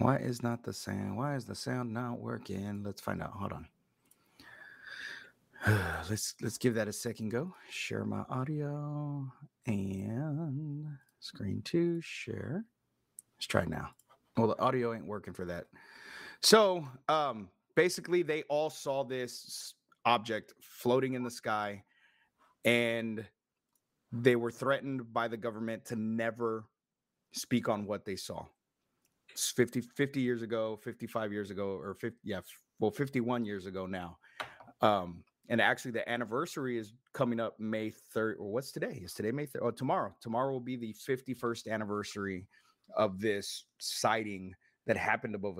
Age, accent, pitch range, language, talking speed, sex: 30-49, American, 105-130 Hz, English, 150 wpm, male